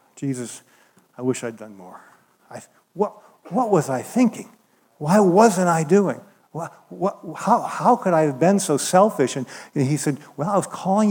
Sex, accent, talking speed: male, American, 185 wpm